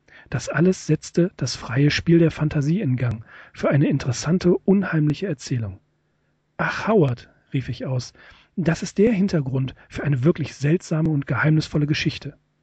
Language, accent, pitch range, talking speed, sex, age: German, German, 140-170 Hz, 145 wpm, male, 40-59